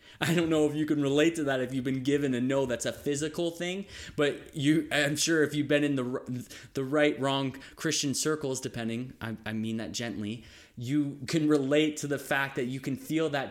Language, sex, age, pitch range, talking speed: English, male, 20-39, 120-145 Hz, 220 wpm